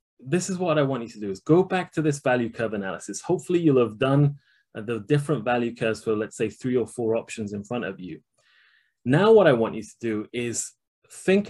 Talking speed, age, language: 230 wpm, 20-39, English